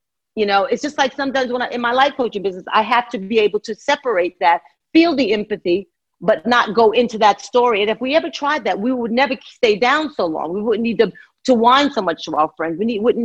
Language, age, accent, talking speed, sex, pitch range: English, 40-59, American, 260 wpm, female, 195-265 Hz